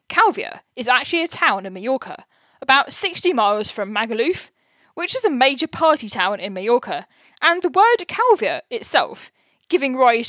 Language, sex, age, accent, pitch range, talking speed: English, female, 10-29, British, 230-320 Hz, 155 wpm